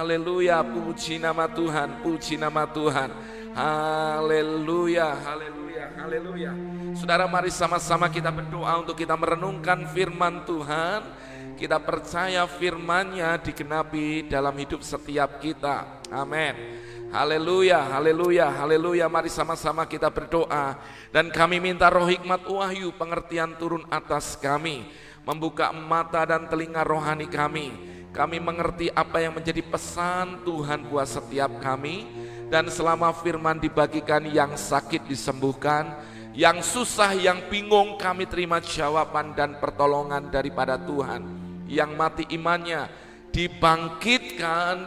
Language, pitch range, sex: Indonesian, 150-170 Hz, male